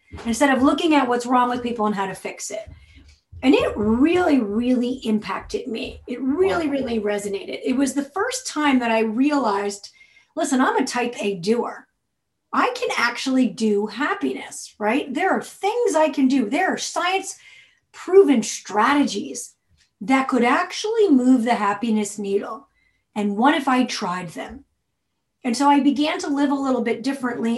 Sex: female